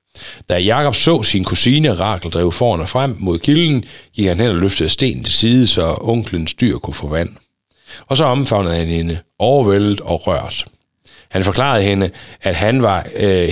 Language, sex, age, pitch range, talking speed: Danish, male, 60-79, 95-130 Hz, 180 wpm